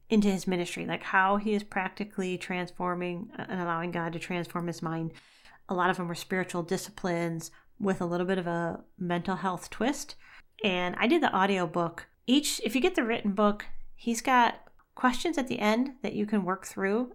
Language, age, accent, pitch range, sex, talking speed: English, 40-59, American, 180-215 Hz, female, 195 wpm